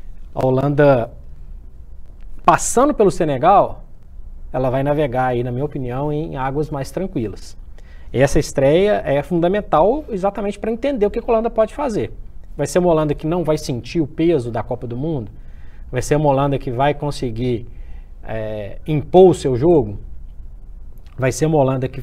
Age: 20-39